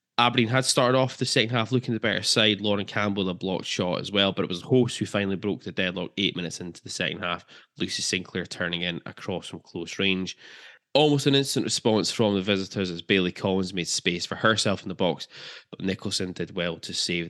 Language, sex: English, male